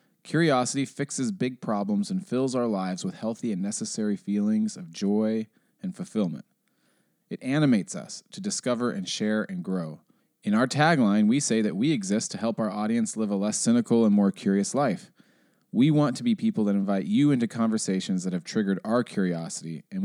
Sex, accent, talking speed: male, American, 185 wpm